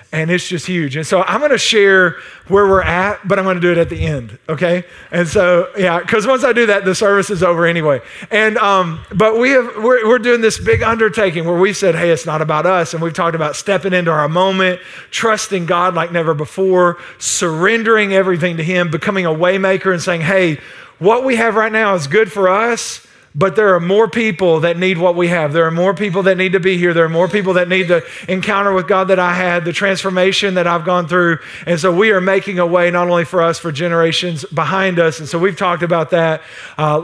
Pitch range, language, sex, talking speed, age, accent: 170-195 Hz, English, male, 240 wpm, 40-59, American